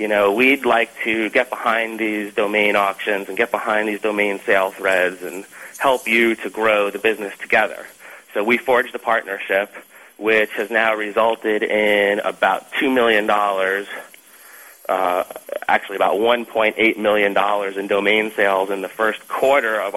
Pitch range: 100-110 Hz